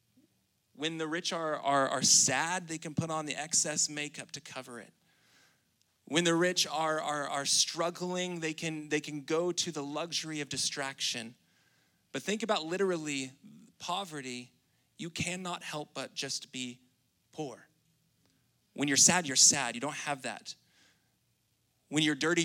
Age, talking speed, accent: 30-49, 155 wpm, American